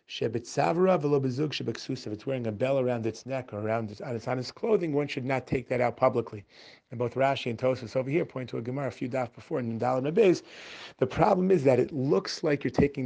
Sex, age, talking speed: male, 30-49, 225 wpm